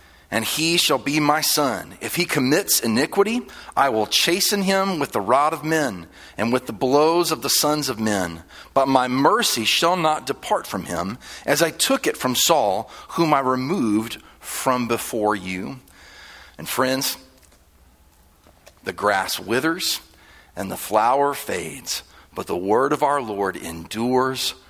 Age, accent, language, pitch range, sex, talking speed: 40-59, American, English, 110-160 Hz, male, 155 wpm